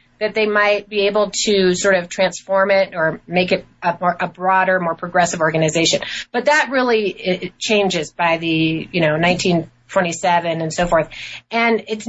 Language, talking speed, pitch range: English, 165 wpm, 170-210 Hz